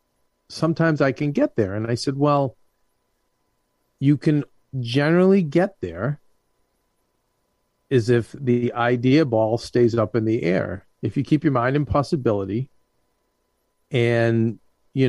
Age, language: 40-59, English